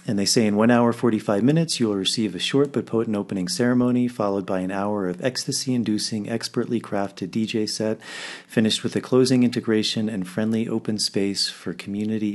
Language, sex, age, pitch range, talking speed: English, male, 40-59, 95-120 Hz, 185 wpm